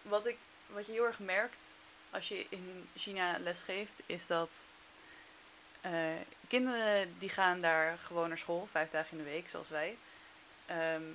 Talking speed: 160 wpm